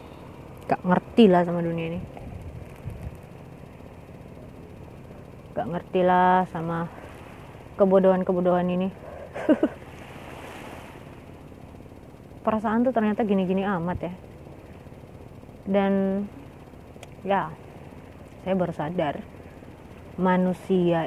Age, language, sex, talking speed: 20-39, Indonesian, female, 70 wpm